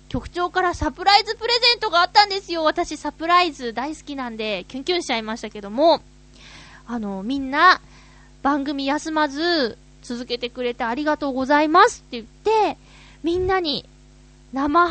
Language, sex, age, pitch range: Japanese, female, 20-39, 260-390 Hz